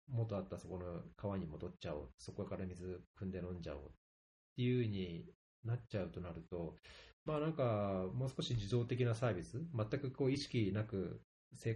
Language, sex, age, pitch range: Japanese, male, 40-59, 95-125 Hz